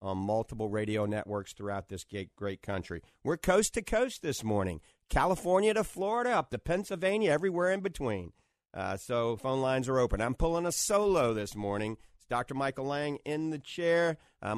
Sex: male